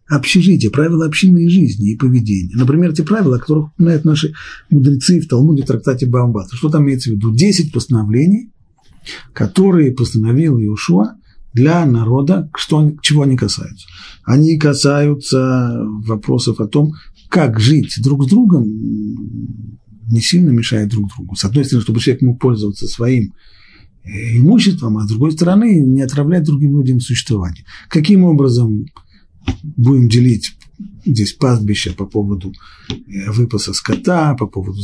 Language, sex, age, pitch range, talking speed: Russian, male, 40-59, 110-155 Hz, 140 wpm